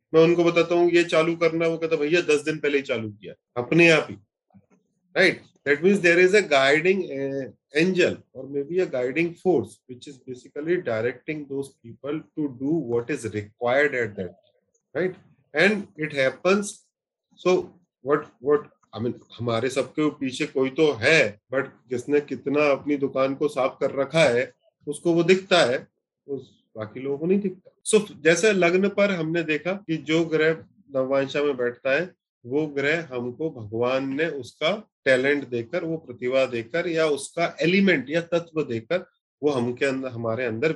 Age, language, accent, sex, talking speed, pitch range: 30-49, Hindi, native, male, 125 wpm, 130-170 Hz